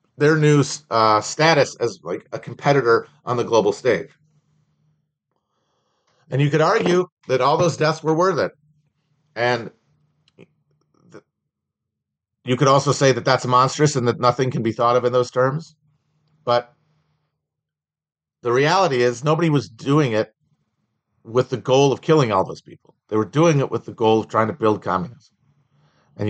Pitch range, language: 125-155 Hz, English